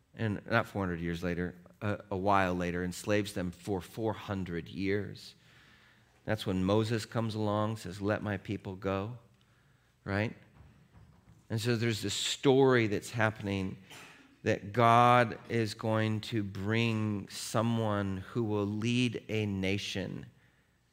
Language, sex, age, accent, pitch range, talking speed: English, male, 40-59, American, 100-125 Hz, 125 wpm